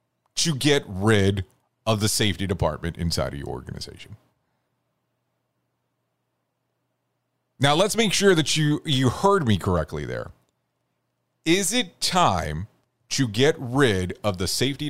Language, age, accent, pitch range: English, 40-59, American, 120-175 Hz